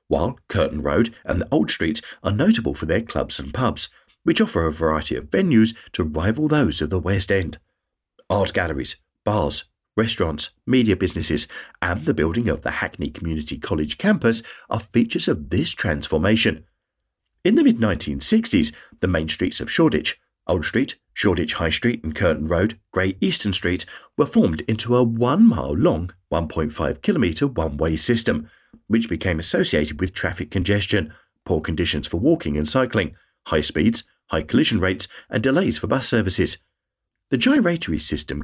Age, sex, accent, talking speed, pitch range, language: 40-59, male, British, 160 wpm, 80-115 Hz, English